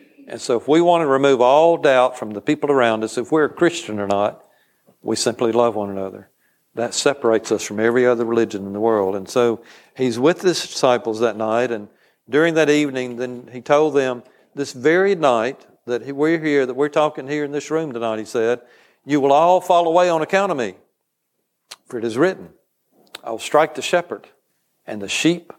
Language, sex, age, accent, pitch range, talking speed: English, male, 50-69, American, 120-150 Hz, 205 wpm